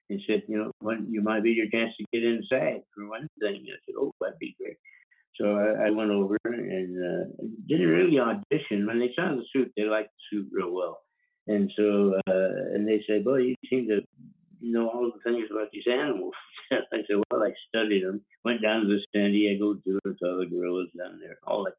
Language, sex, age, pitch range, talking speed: English, male, 60-79, 100-120 Hz, 225 wpm